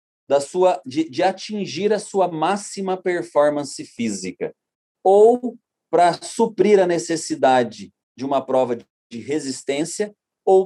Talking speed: 105 wpm